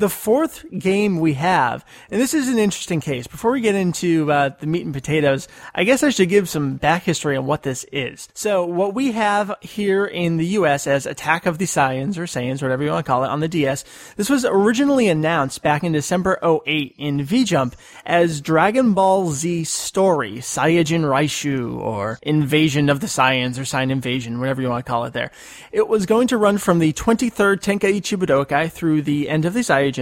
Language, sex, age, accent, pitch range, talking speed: English, male, 30-49, American, 145-195 Hz, 210 wpm